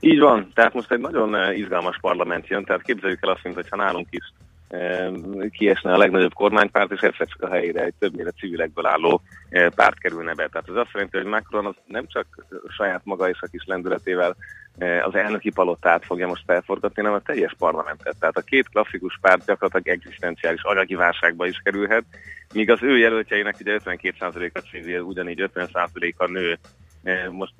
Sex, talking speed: male, 180 wpm